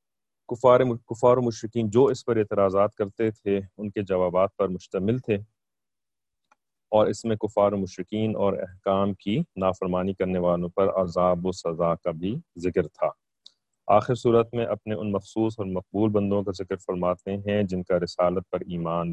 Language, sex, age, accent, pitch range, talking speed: English, male, 30-49, Indian, 90-110 Hz, 165 wpm